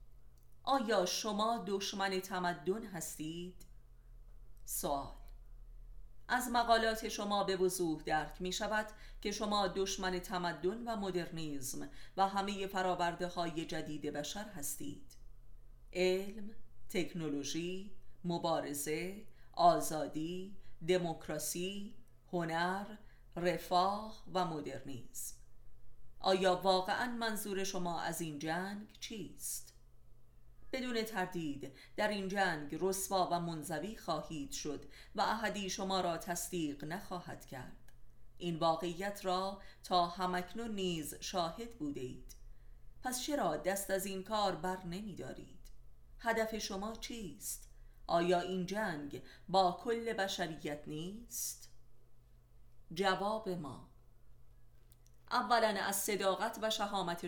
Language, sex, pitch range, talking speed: Persian, female, 140-195 Hz, 100 wpm